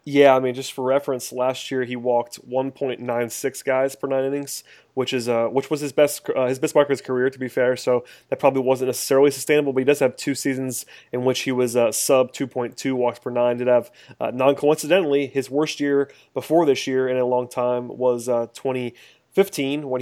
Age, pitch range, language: 30-49, 120-135 Hz, English